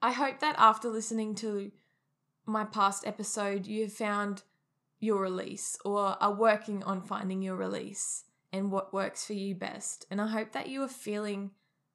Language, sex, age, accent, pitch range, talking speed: English, female, 10-29, Australian, 185-225 Hz, 165 wpm